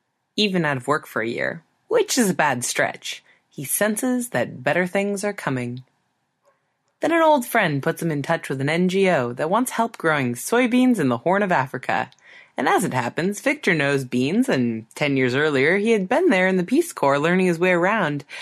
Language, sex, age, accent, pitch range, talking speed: English, female, 20-39, American, 140-215 Hz, 205 wpm